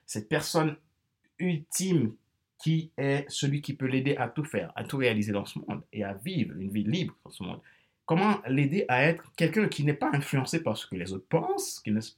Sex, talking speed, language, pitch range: male, 215 wpm, French, 105-160 Hz